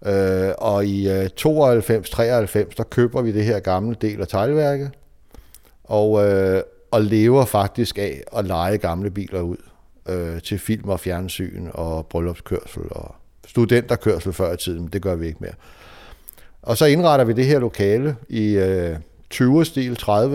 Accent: native